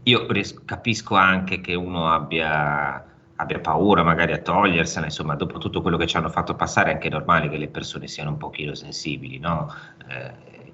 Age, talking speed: 30-49, 185 wpm